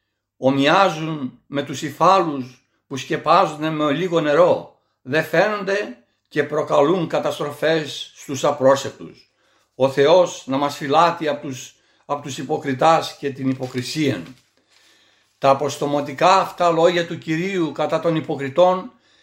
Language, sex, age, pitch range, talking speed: Greek, male, 60-79, 140-170 Hz, 120 wpm